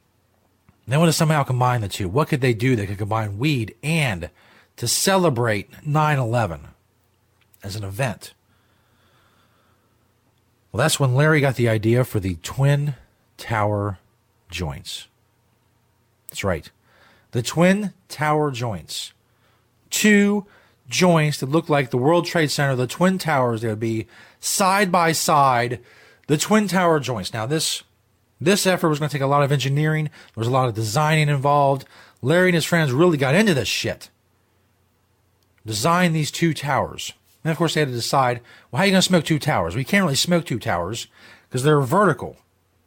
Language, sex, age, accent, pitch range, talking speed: English, male, 40-59, American, 105-155 Hz, 165 wpm